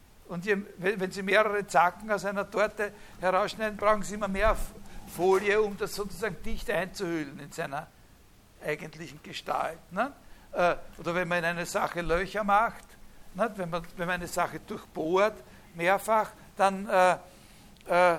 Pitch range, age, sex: 170-200 Hz, 60-79, male